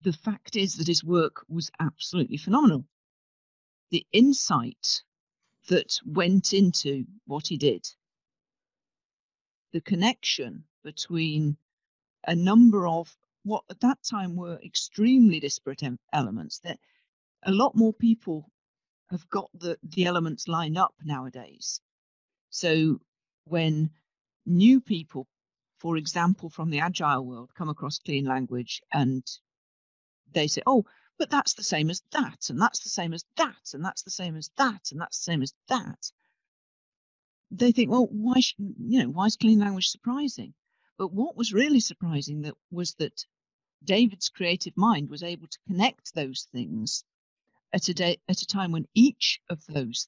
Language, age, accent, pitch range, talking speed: English, 50-69, British, 150-205 Hz, 150 wpm